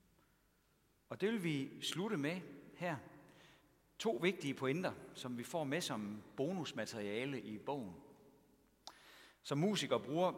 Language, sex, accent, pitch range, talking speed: Danish, male, native, 115-165 Hz, 120 wpm